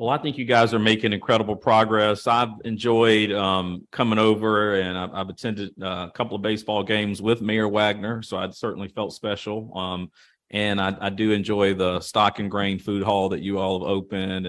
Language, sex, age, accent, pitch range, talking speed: English, male, 40-59, American, 100-125 Hz, 200 wpm